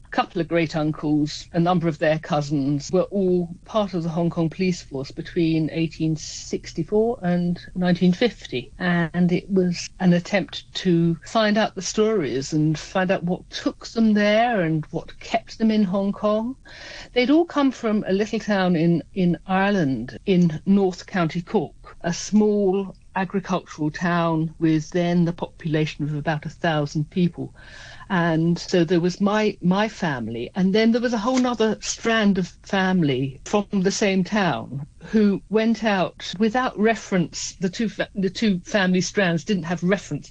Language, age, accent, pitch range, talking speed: English, 50-69, British, 155-195 Hz, 160 wpm